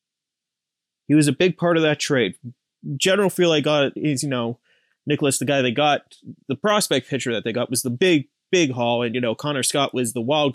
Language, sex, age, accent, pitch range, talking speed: English, male, 30-49, American, 125-165 Hz, 220 wpm